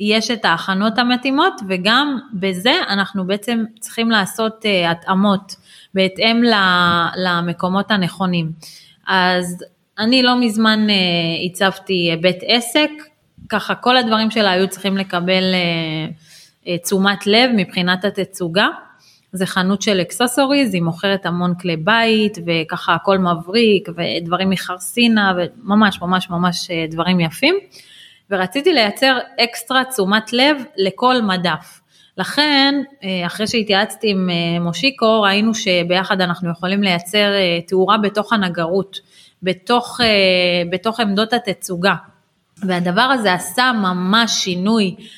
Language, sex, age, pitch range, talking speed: Hebrew, female, 20-39, 180-225 Hz, 105 wpm